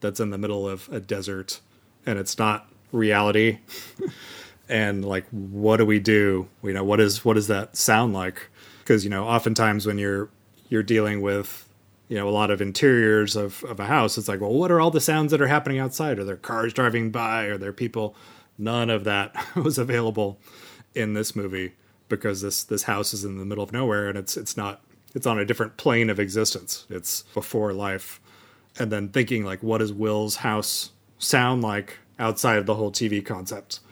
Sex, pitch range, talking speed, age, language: male, 100-115 Hz, 200 wpm, 30-49, English